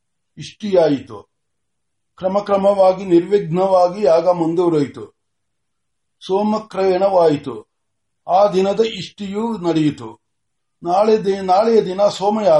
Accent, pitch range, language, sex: native, 160-205 Hz, Marathi, male